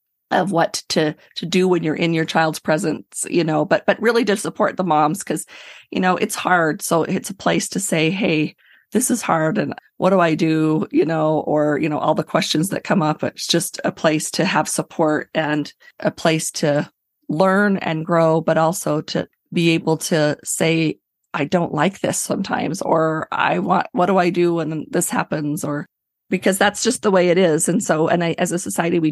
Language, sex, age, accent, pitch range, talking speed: English, female, 30-49, American, 155-185 Hz, 210 wpm